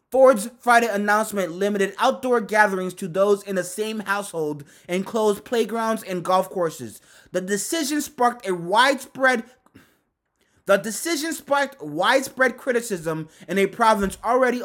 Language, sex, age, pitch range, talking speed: English, male, 20-39, 180-230 Hz, 130 wpm